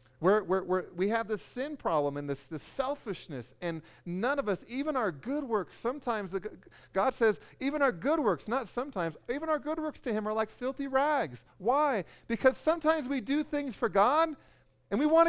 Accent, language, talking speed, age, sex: American, English, 205 wpm, 40-59, male